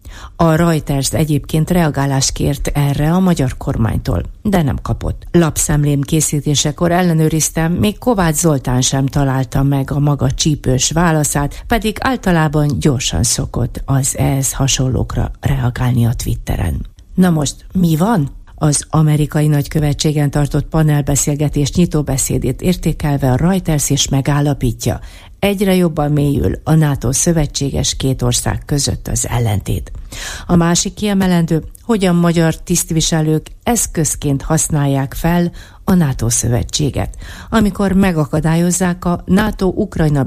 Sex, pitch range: female, 125-170 Hz